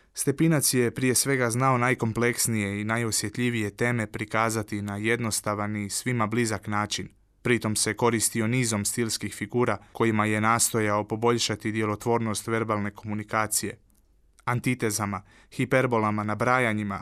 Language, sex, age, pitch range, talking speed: Croatian, male, 20-39, 105-120 Hz, 115 wpm